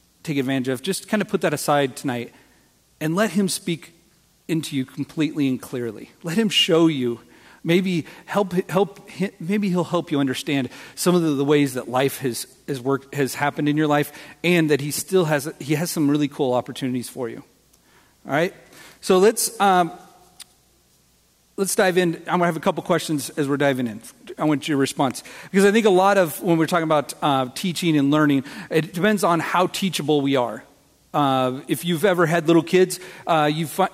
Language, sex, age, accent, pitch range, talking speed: English, male, 40-59, American, 145-185 Hz, 195 wpm